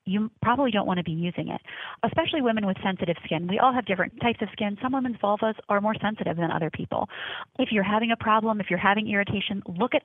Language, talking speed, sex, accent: English, 240 wpm, female, American